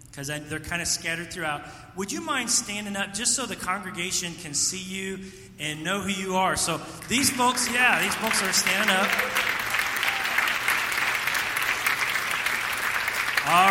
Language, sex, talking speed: English, male, 145 wpm